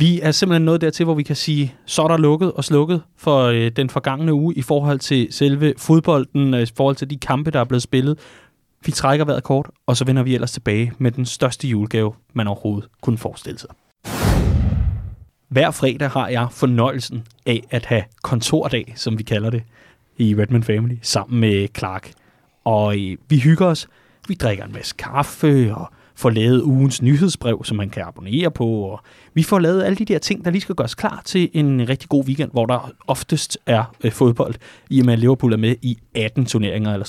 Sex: male